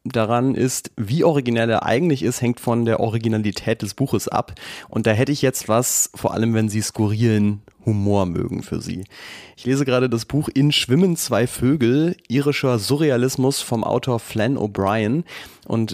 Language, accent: German, German